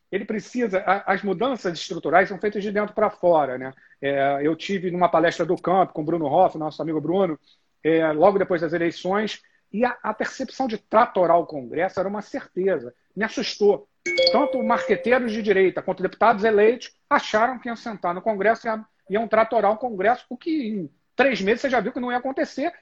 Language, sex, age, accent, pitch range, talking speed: Portuguese, male, 40-59, Brazilian, 170-235 Hz, 195 wpm